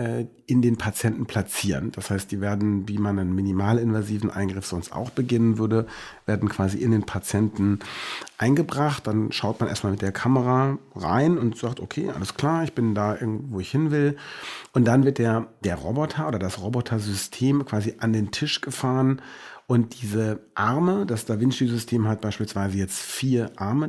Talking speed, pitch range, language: 175 wpm, 100-125 Hz, German